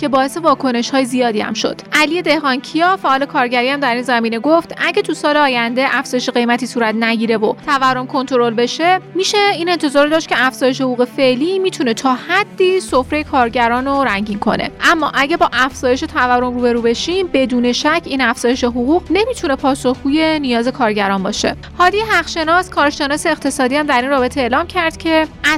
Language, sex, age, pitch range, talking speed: Persian, female, 30-49, 245-320 Hz, 175 wpm